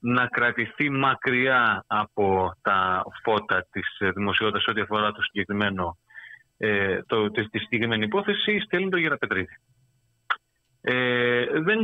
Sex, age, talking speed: male, 30-49, 110 wpm